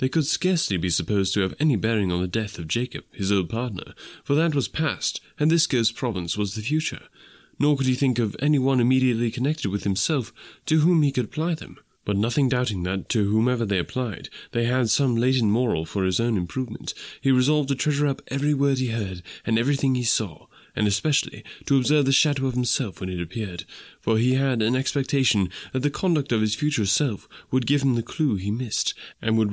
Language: English